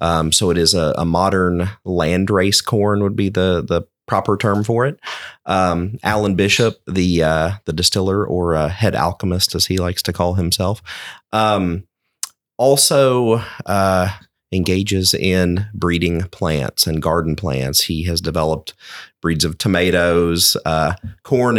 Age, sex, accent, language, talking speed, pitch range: 30-49, male, American, English, 145 wpm, 85-100 Hz